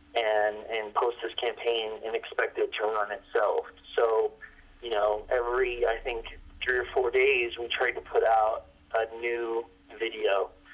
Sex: male